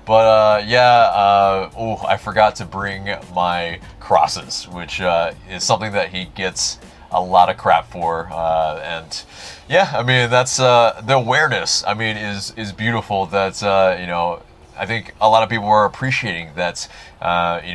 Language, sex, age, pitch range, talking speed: English, male, 30-49, 90-115 Hz, 175 wpm